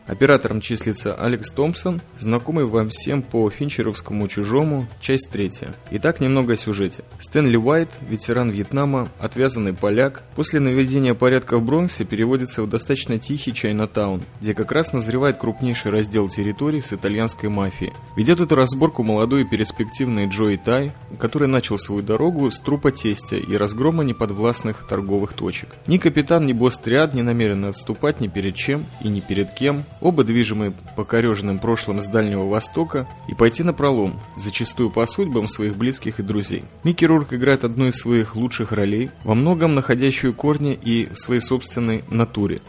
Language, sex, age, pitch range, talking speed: Russian, male, 20-39, 110-135 Hz, 155 wpm